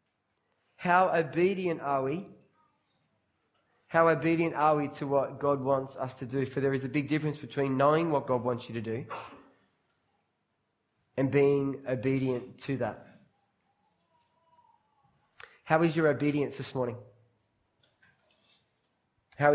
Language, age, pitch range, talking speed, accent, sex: English, 20-39, 135-150 Hz, 125 wpm, Australian, male